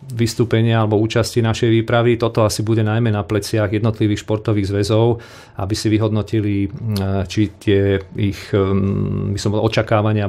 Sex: male